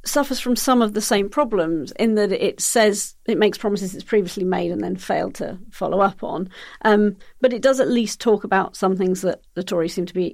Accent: British